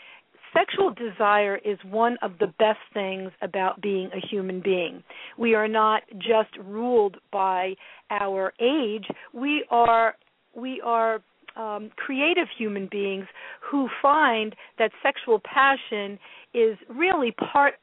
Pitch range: 205-270 Hz